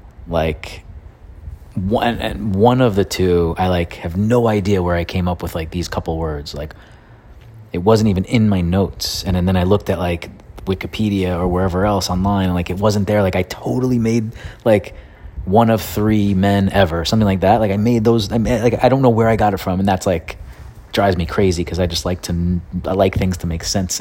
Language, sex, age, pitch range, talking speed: English, male, 30-49, 85-100 Hz, 225 wpm